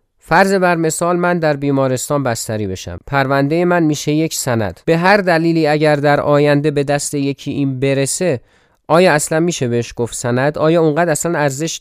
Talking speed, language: 175 wpm, Persian